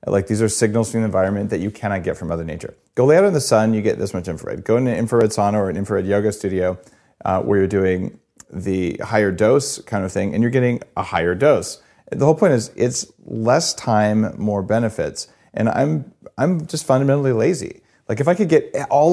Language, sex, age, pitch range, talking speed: English, male, 40-59, 105-135 Hz, 225 wpm